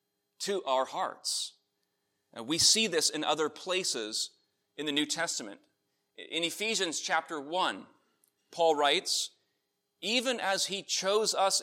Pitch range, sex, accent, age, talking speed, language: 145-190 Hz, male, American, 30-49, 130 wpm, English